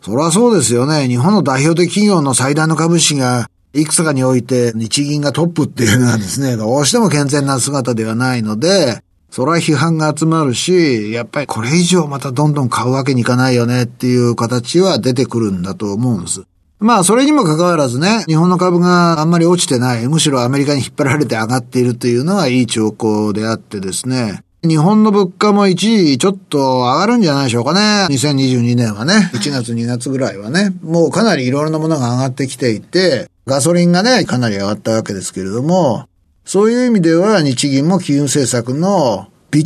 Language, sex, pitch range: Japanese, male, 120-175 Hz